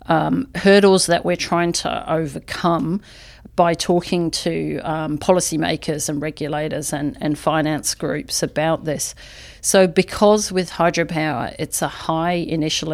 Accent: Australian